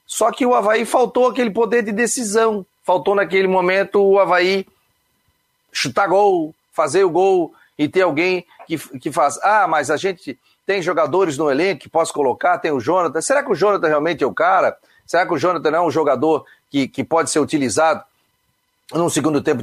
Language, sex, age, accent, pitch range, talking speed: Portuguese, male, 40-59, Brazilian, 155-220 Hz, 195 wpm